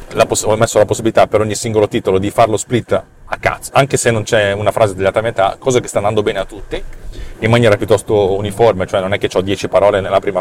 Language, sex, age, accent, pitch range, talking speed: Italian, male, 40-59, native, 95-120 Hz, 250 wpm